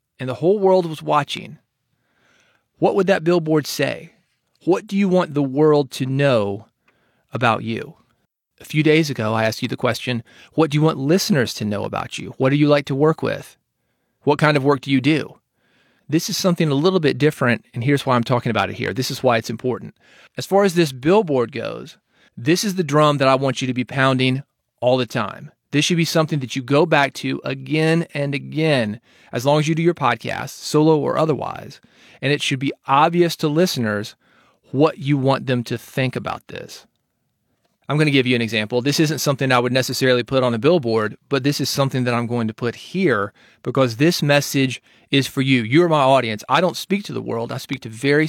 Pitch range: 125-160 Hz